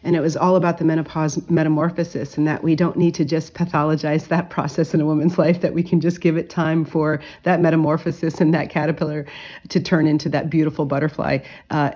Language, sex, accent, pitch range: English, female, American, 155-200 Hz